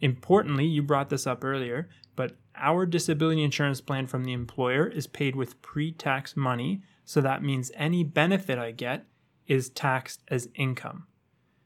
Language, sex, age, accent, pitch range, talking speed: English, male, 20-39, American, 130-150 Hz, 155 wpm